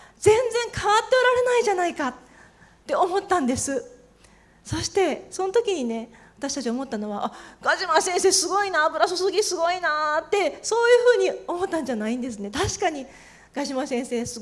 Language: Japanese